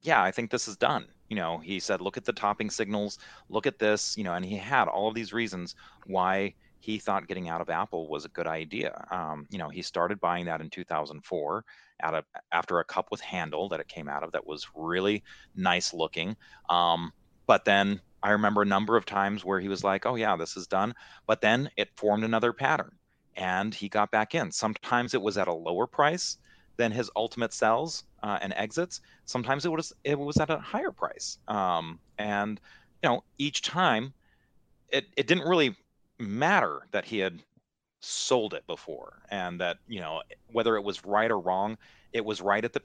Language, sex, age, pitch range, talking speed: English, male, 30-49, 95-120 Hz, 205 wpm